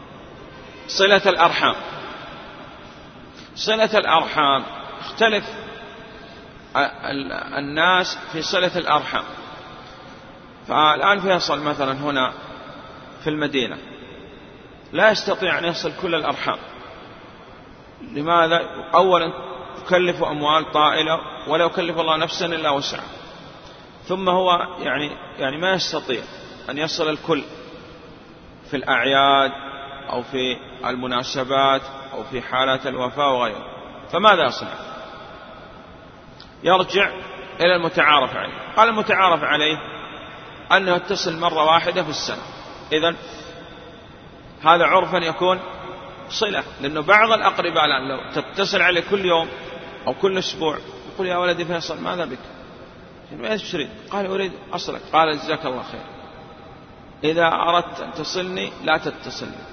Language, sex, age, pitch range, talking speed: Arabic, male, 40-59, 145-185 Hz, 105 wpm